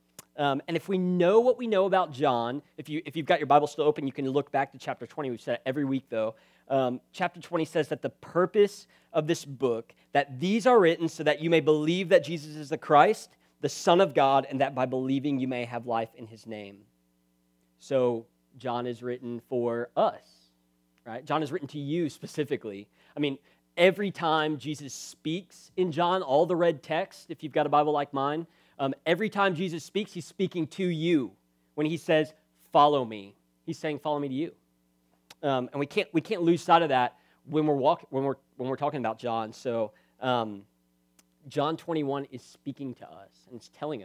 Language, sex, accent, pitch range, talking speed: English, male, American, 120-160 Hz, 210 wpm